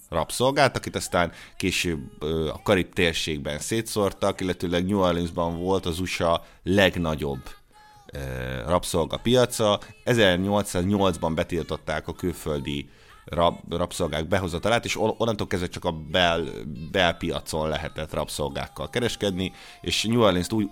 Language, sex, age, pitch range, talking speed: Hungarian, male, 30-49, 80-100 Hz, 115 wpm